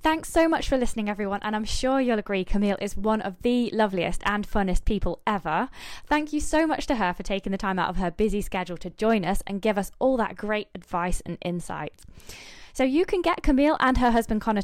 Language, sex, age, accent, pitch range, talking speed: English, female, 10-29, British, 190-260 Hz, 235 wpm